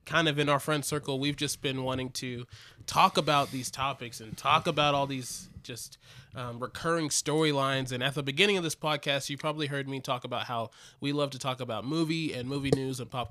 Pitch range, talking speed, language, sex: 130-160 Hz, 220 wpm, English, male